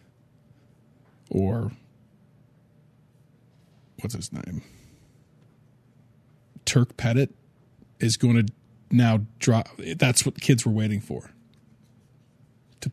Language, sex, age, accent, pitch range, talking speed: English, male, 40-59, American, 115-140 Hz, 85 wpm